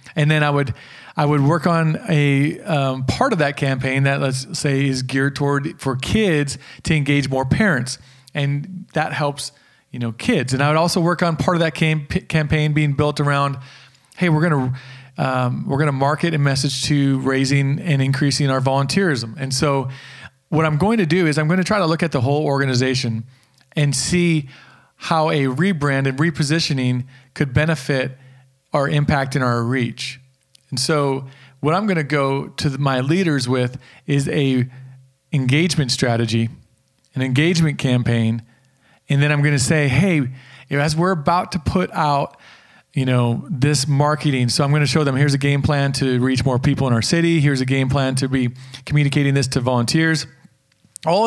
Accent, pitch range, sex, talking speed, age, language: American, 130-155 Hz, male, 185 wpm, 40-59, English